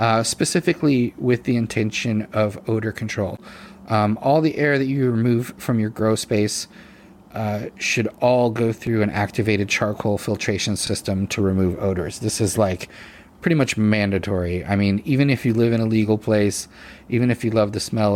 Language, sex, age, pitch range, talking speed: English, male, 30-49, 100-115 Hz, 180 wpm